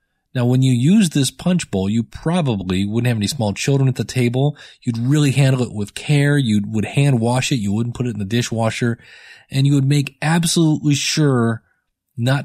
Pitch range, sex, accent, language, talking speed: 115-160 Hz, male, American, English, 200 wpm